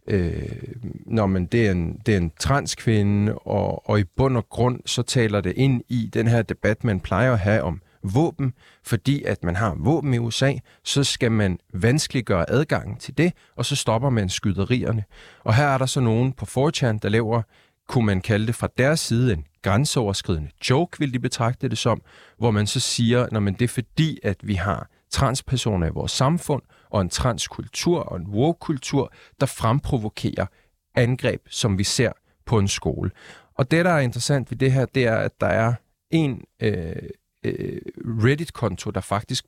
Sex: male